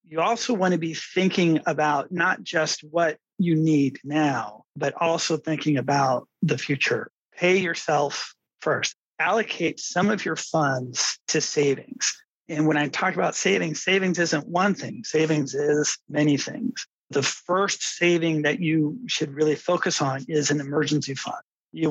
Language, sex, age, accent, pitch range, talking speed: English, male, 40-59, American, 145-175 Hz, 155 wpm